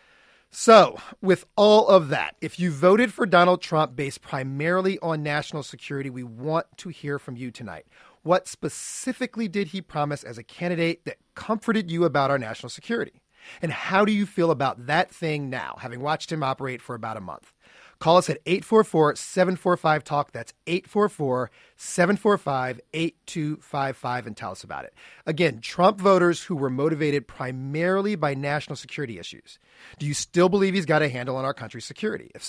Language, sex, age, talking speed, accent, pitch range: English, male, 40-59, 165 wpm, American, 135-185 Hz